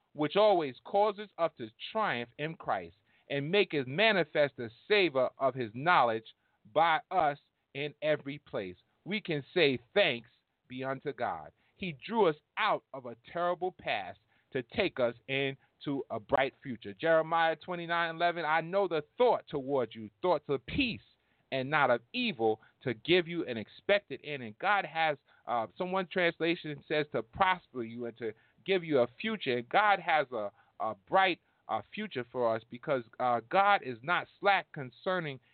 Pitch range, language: 120-180 Hz, English